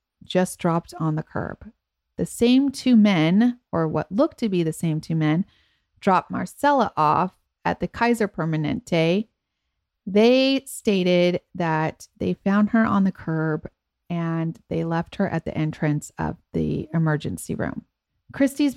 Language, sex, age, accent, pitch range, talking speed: English, female, 30-49, American, 160-195 Hz, 145 wpm